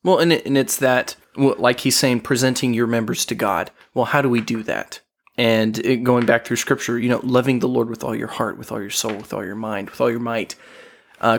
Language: English